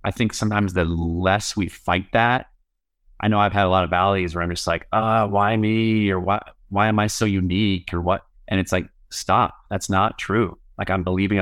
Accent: American